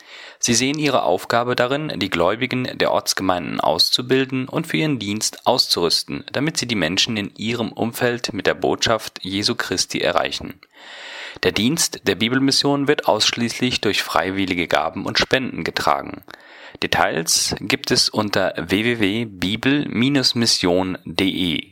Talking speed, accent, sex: 125 wpm, German, male